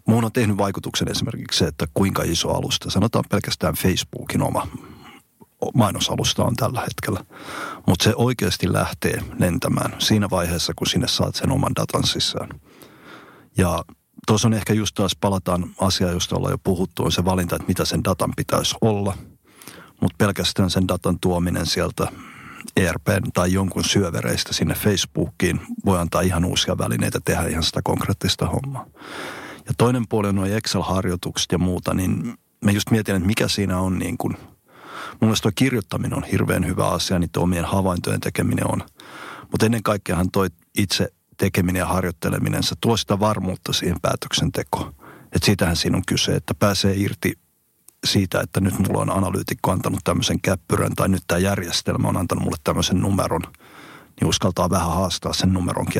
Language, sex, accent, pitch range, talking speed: Finnish, male, native, 90-105 Hz, 160 wpm